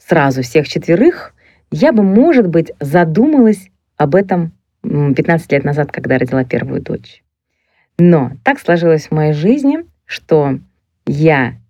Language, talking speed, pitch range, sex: Russian, 130 wpm, 145-190 Hz, female